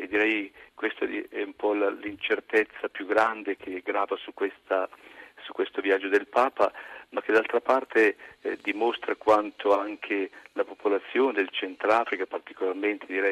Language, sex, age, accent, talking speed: Italian, male, 50-69, native, 145 wpm